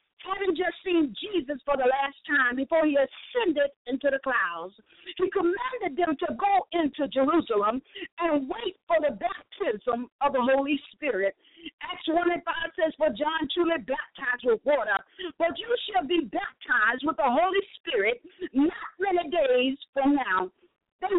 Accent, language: American, English